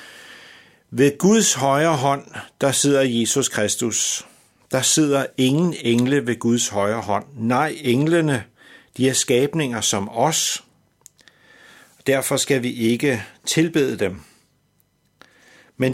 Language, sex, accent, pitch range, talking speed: Danish, male, native, 110-150 Hz, 115 wpm